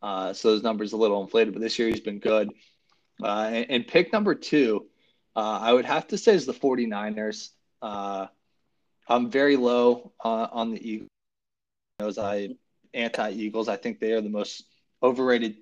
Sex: male